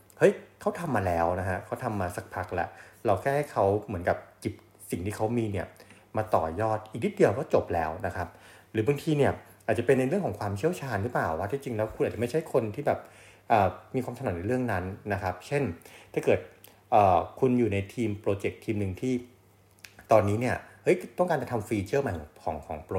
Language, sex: English, male